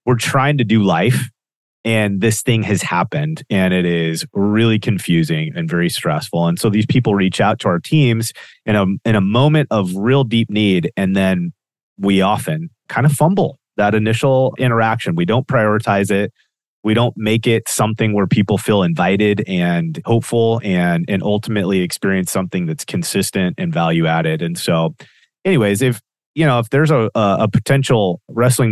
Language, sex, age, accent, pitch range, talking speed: English, male, 30-49, American, 95-125 Hz, 175 wpm